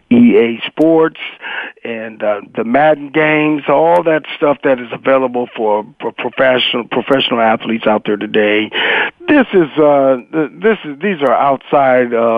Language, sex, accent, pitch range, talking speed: English, male, American, 120-160 Hz, 130 wpm